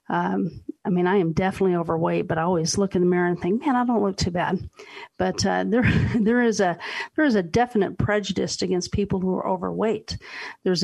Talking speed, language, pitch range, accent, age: 215 wpm, English, 185-225 Hz, American, 50-69